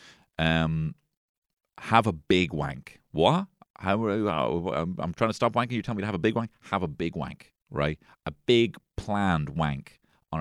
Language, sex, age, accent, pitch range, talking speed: English, male, 30-49, British, 80-105 Hz, 180 wpm